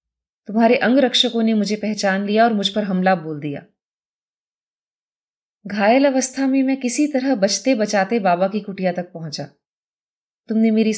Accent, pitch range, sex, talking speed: native, 190-270 Hz, female, 150 wpm